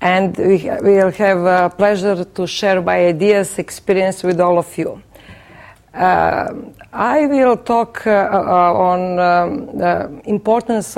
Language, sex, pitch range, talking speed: English, female, 185-215 Hz, 140 wpm